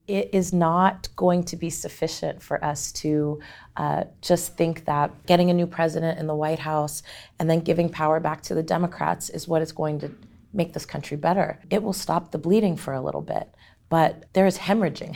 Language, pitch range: English, 150-175 Hz